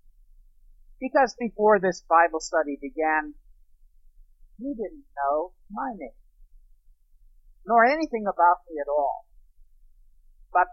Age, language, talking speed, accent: 50-69, English, 100 wpm, American